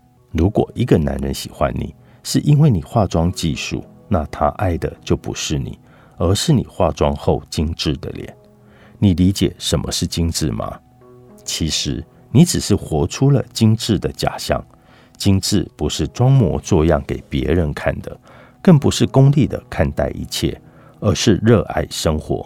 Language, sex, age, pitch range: Chinese, male, 50-69, 80-115 Hz